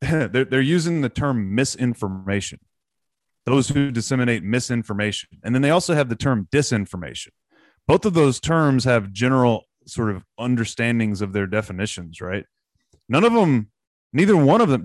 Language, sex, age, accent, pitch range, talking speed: English, male, 30-49, American, 105-135 Hz, 150 wpm